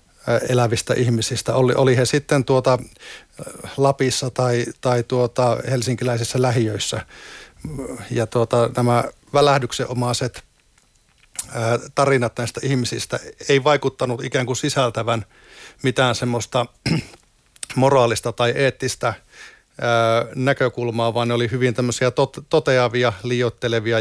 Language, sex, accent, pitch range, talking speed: Finnish, male, native, 120-135 Hz, 95 wpm